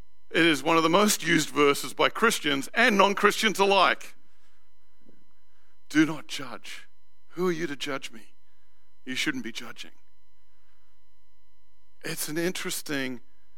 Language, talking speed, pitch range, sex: English, 130 wpm, 145-200 Hz, male